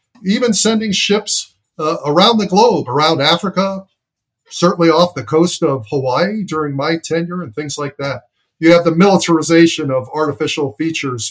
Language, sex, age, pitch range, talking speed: English, male, 50-69, 135-170 Hz, 155 wpm